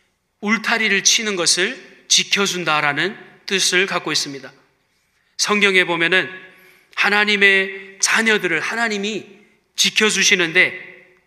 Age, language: 30-49, Korean